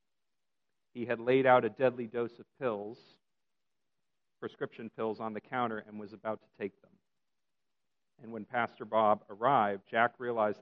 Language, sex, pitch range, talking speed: English, male, 105-130 Hz, 155 wpm